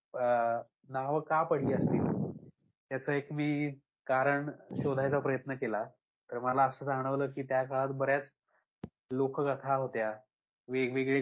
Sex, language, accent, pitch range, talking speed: male, Marathi, native, 125-145 Hz, 120 wpm